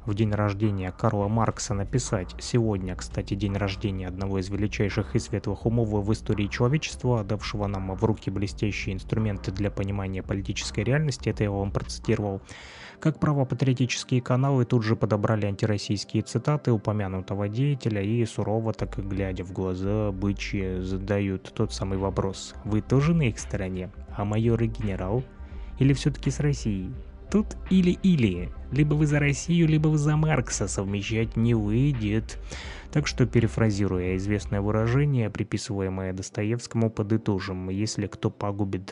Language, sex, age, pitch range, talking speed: Russian, male, 20-39, 100-120 Hz, 140 wpm